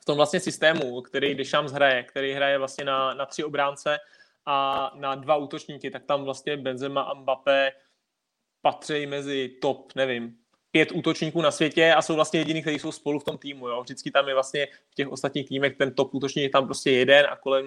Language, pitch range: Czech, 140-175 Hz